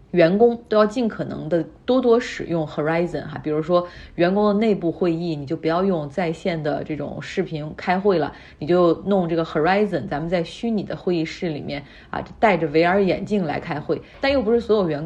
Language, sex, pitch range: Chinese, female, 160-200 Hz